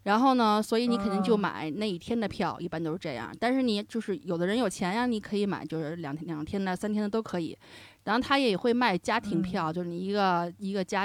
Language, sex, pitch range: Chinese, female, 170-215 Hz